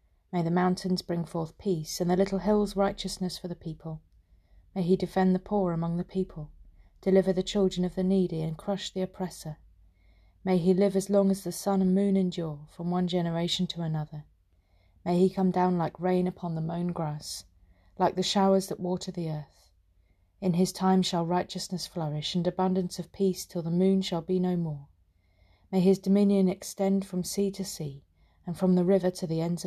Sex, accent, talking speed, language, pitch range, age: female, British, 195 wpm, English, 150-190 Hz, 30-49